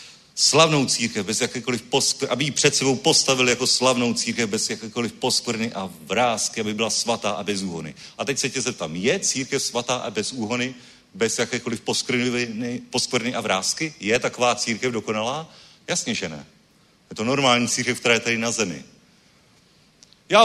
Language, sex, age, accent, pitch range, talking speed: Czech, male, 40-59, native, 115-150 Hz, 160 wpm